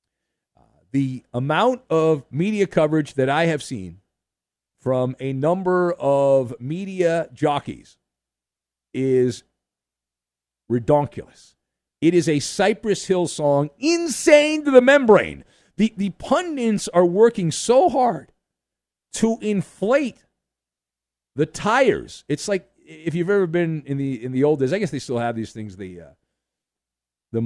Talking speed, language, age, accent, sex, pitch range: 130 wpm, English, 50-69, American, male, 115-180 Hz